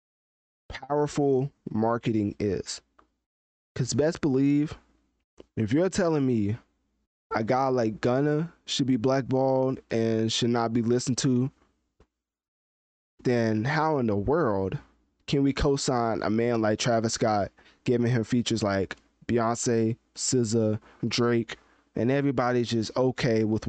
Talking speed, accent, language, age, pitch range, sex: 120 wpm, American, English, 20-39, 105-130 Hz, male